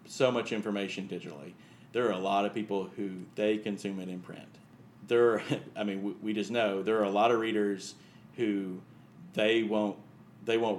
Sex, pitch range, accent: male, 90-105 Hz, American